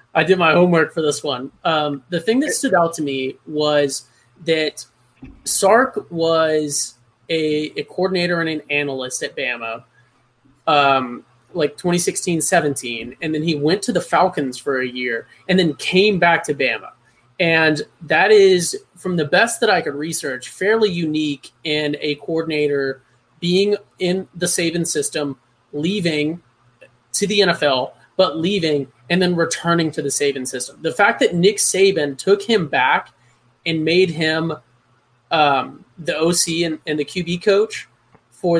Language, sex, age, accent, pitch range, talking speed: English, male, 20-39, American, 145-180 Hz, 155 wpm